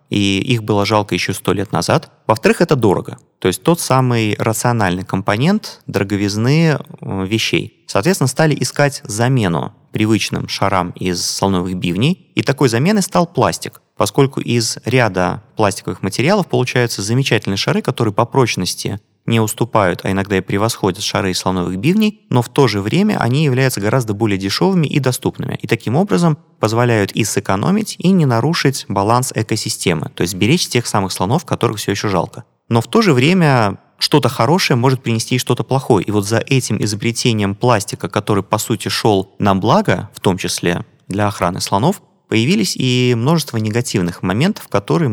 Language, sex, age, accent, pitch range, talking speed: Russian, male, 30-49, native, 100-140 Hz, 165 wpm